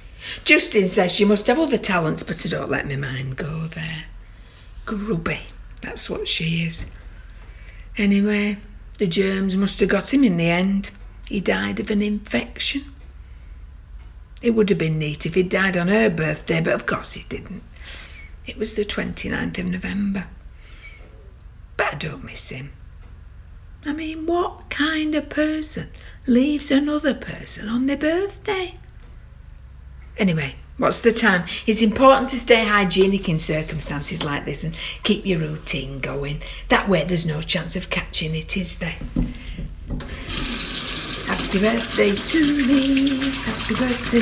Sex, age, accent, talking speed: female, 60-79, British, 145 wpm